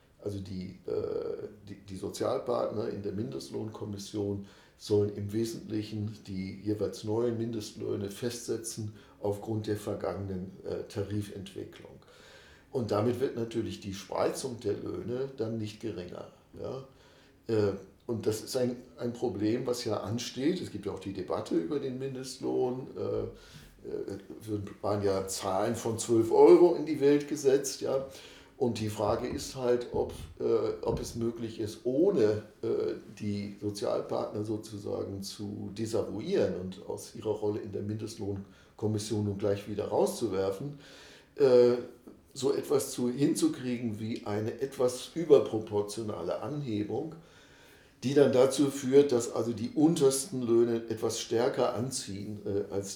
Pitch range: 105-125 Hz